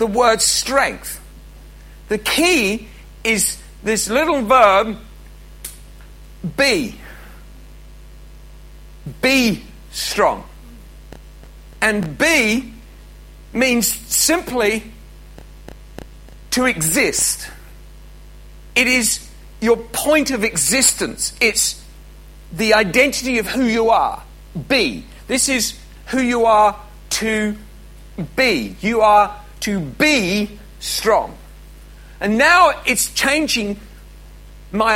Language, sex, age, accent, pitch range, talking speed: English, male, 50-69, British, 205-255 Hz, 85 wpm